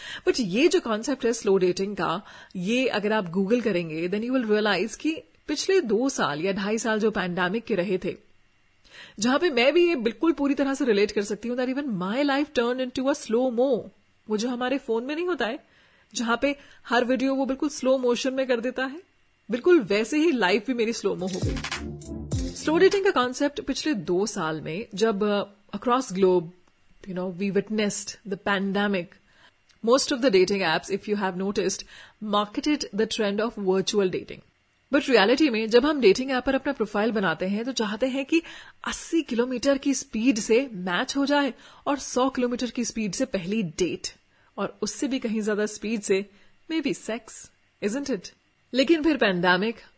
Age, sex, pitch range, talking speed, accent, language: 30-49, female, 205-275 Hz, 190 wpm, native, Hindi